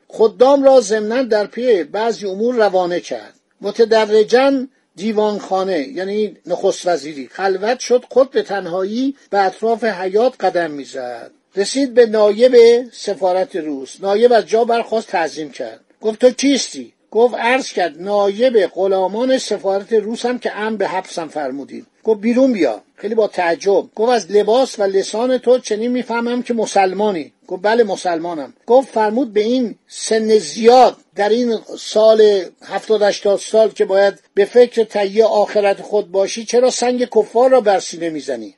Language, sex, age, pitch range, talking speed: Persian, male, 50-69, 195-240 Hz, 150 wpm